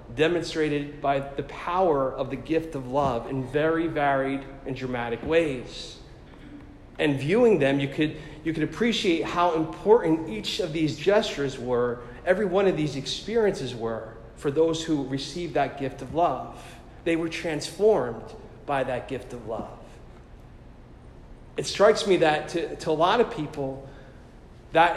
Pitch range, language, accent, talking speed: 135-170 Hz, English, American, 150 wpm